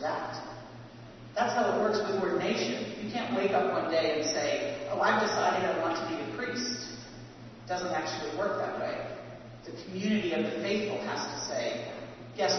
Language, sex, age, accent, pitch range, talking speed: English, female, 40-59, American, 200-275 Hz, 185 wpm